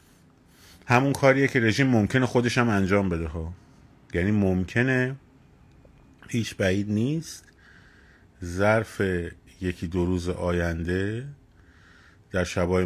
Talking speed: 105 wpm